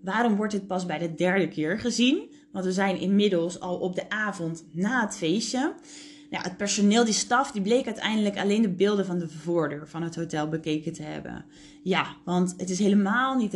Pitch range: 180-275 Hz